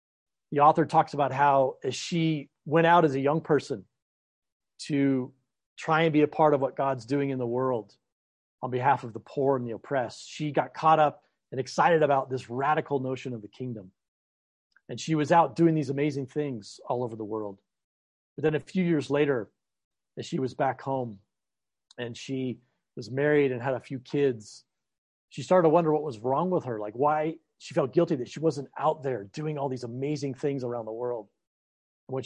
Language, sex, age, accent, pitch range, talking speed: English, male, 40-59, American, 120-150 Hz, 200 wpm